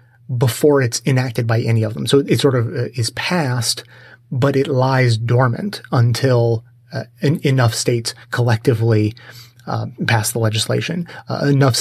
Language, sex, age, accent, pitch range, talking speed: English, male, 30-49, American, 120-145 Hz, 140 wpm